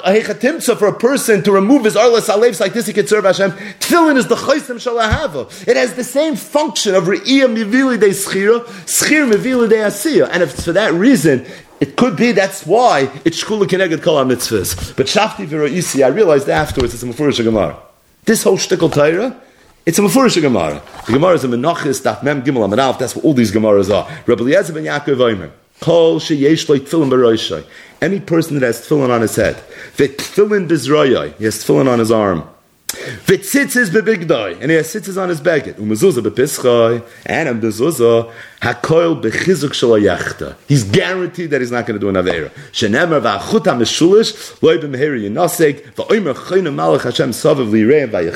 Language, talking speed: English, 160 wpm